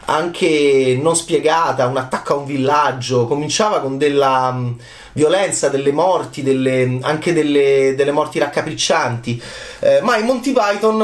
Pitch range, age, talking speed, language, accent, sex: 130-180 Hz, 30-49, 140 wpm, Italian, native, male